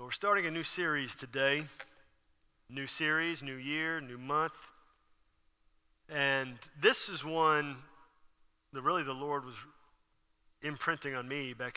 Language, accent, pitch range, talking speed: English, American, 135-180 Hz, 125 wpm